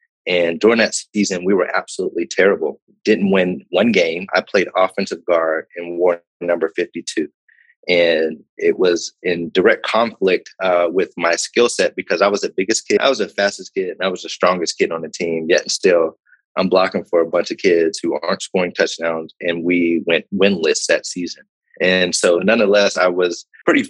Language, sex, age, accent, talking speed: English, male, 30-49, American, 195 wpm